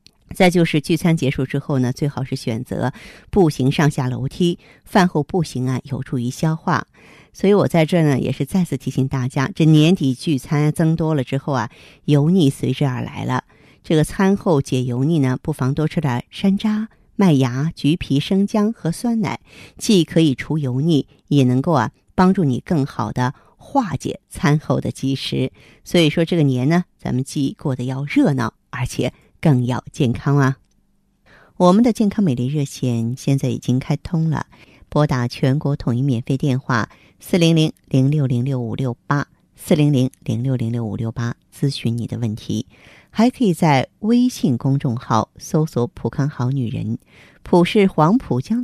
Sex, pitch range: female, 130-170 Hz